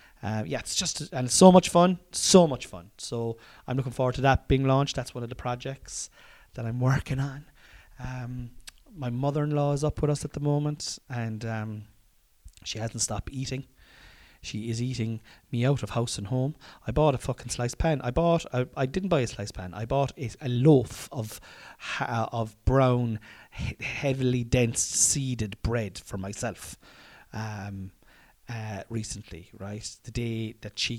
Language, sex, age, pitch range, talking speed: English, male, 30-49, 105-145 Hz, 185 wpm